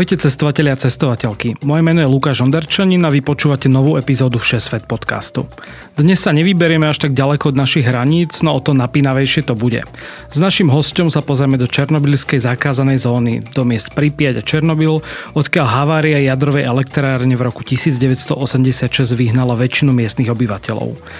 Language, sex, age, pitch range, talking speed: Slovak, male, 40-59, 125-150 Hz, 155 wpm